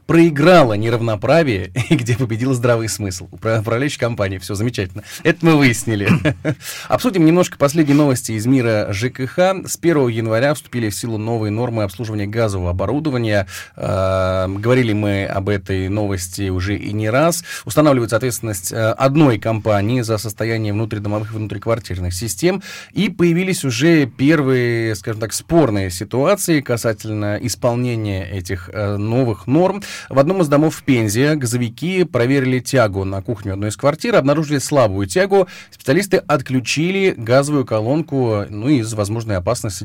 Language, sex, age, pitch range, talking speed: Russian, male, 20-39, 105-145 Hz, 135 wpm